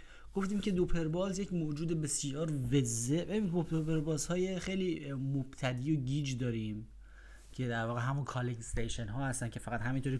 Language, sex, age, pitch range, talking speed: Persian, male, 30-49, 115-160 Hz, 160 wpm